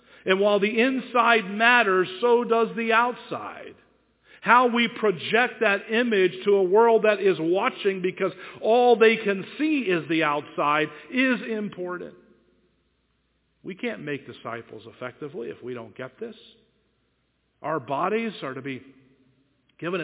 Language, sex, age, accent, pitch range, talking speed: English, male, 50-69, American, 135-215 Hz, 140 wpm